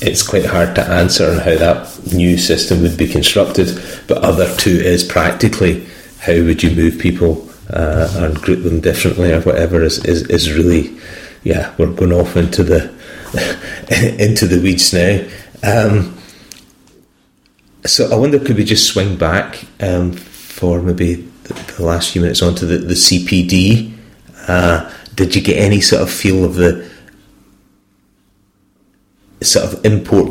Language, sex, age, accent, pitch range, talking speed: English, male, 30-49, British, 85-95 Hz, 155 wpm